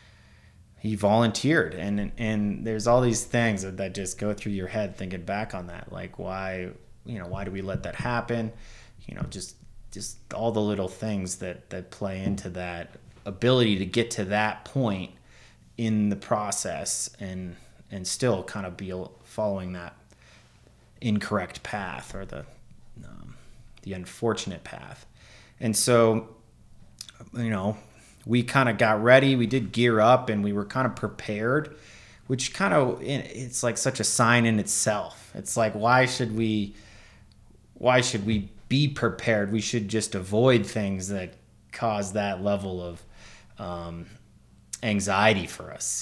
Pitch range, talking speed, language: 95-115 Hz, 155 wpm, English